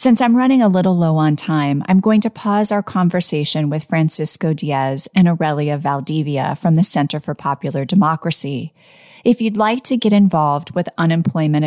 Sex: female